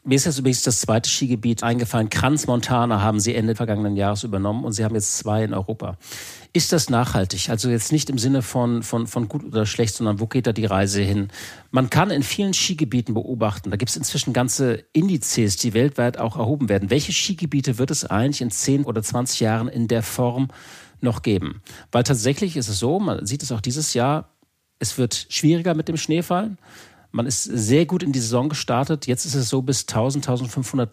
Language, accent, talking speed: German, German, 210 wpm